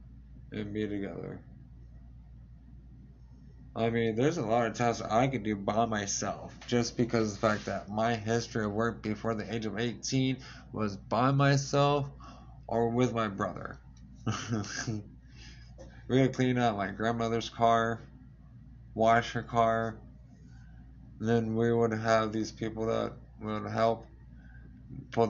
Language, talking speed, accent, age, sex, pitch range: English, 135 wpm, American, 20-39, male, 105-125 Hz